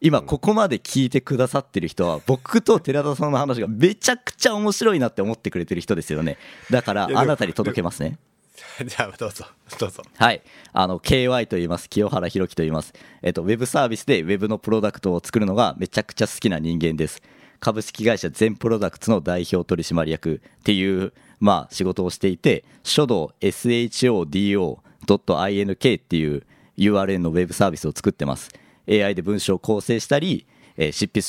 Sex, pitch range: male, 85-110 Hz